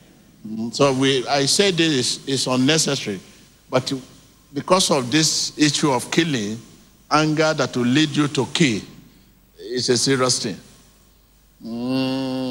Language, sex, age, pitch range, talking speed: English, male, 60-79, 120-150 Hz, 125 wpm